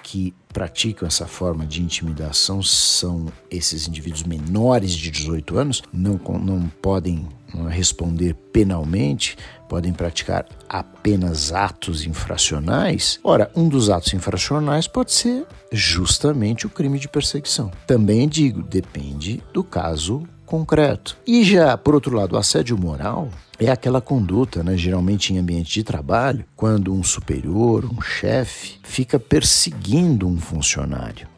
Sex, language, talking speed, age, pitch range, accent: male, Portuguese, 125 wpm, 50-69, 85-120 Hz, Brazilian